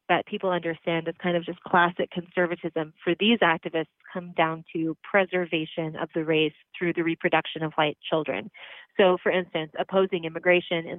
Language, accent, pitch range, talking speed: English, American, 160-185 Hz, 170 wpm